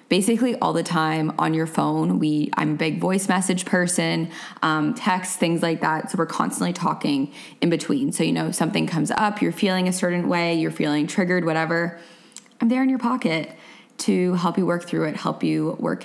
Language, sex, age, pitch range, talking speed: English, female, 20-39, 165-220 Hz, 200 wpm